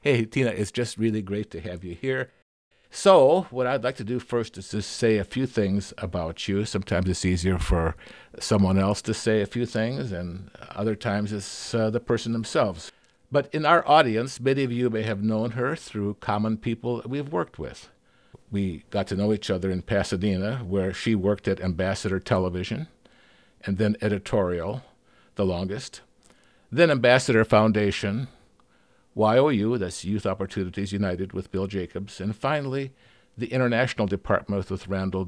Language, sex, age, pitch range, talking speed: English, male, 50-69, 95-115 Hz, 165 wpm